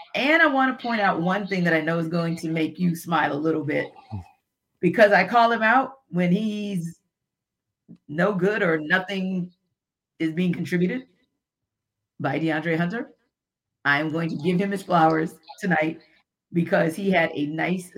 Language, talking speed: English, 165 wpm